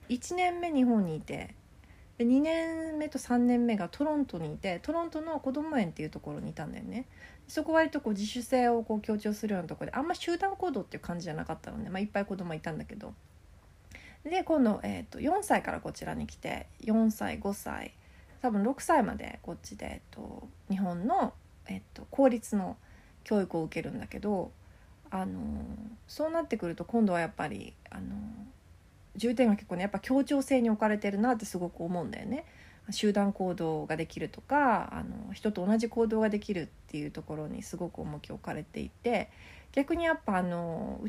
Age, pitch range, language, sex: 30-49, 185-255 Hz, Japanese, female